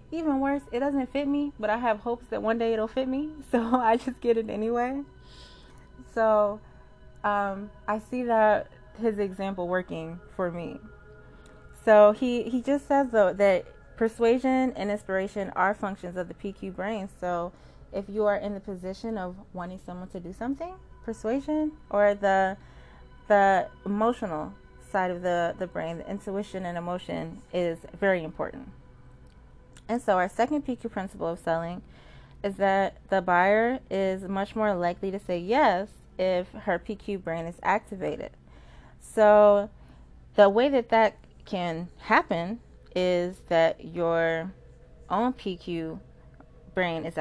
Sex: female